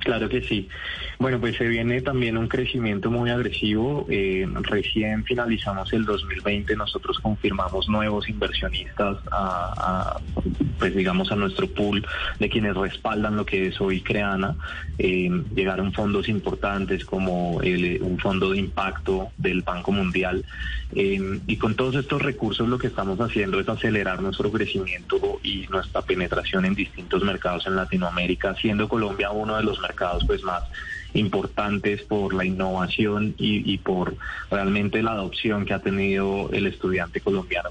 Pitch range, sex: 95-110 Hz, male